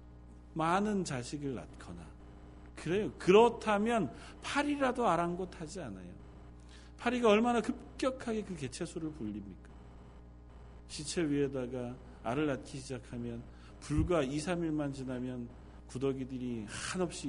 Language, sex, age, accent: Korean, male, 40-59, native